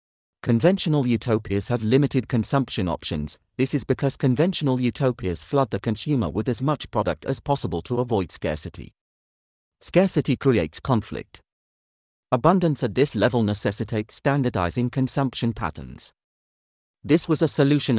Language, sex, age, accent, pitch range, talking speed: English, male, 40-59, British, 100-135 Hz, 125 wpm